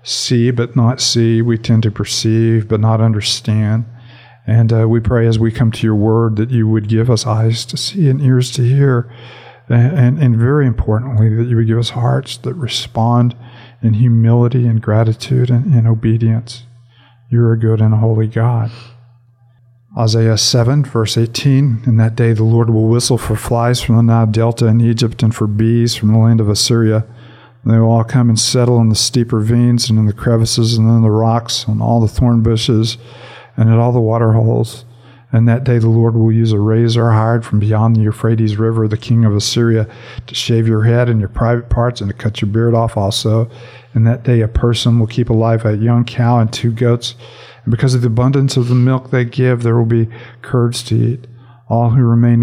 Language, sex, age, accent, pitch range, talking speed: English, male, 50-69, American, 115-120 Hz, 210 wpm